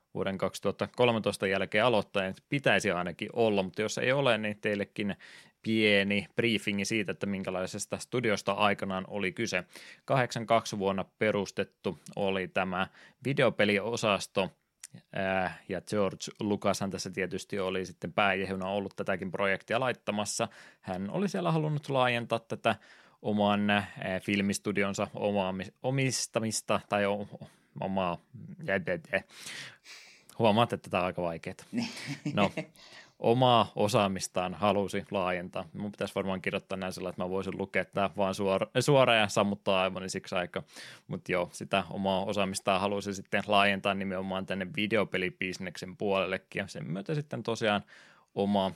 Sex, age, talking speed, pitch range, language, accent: male, 20-39, 130 wpm, 95-105 Hz, Finnish, native